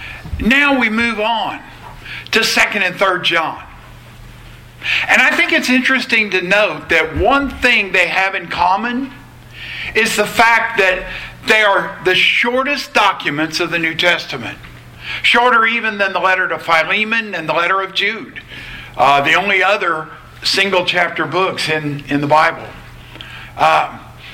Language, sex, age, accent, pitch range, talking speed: English, male, 50-69, American, 175-225 Hz, 150 wpm